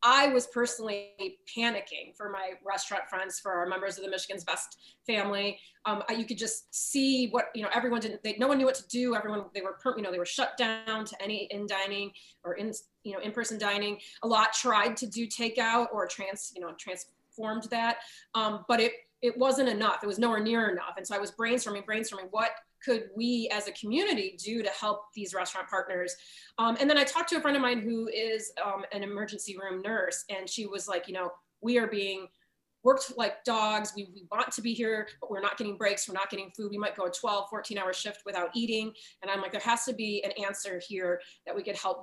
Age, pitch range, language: 30-49, 195-235 Hz, English